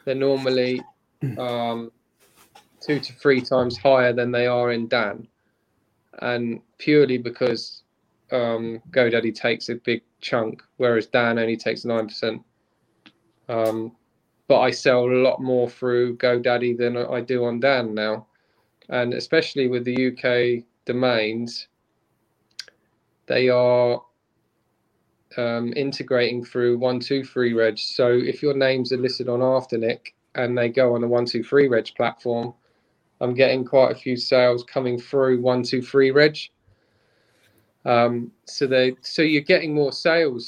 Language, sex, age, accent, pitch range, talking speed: English, male, 20-39, British, 120-135 Hz, 140 wpm